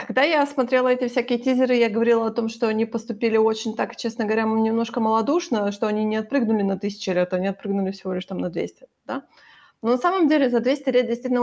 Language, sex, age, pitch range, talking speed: Ukrainian, female, 20-39, 210-250 Hz, 220 wpm